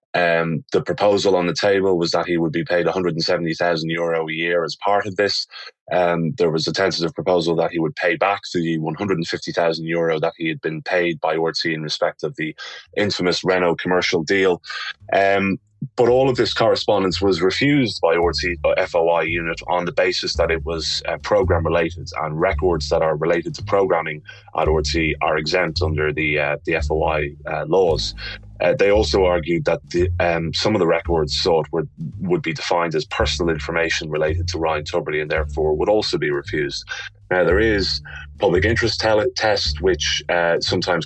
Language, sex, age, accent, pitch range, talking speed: English, male, 20-39, British, 80-90 Hz, 180 wpm